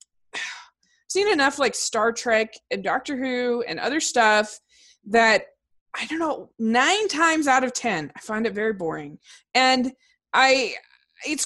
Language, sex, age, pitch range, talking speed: English, female, 20-39, 230-325 Hz, 150 wpm